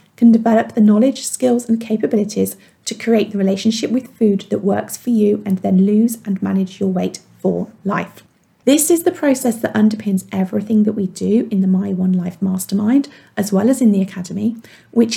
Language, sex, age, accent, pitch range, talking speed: English, female, 40-59, British, 195-235 Hz, 195 wpm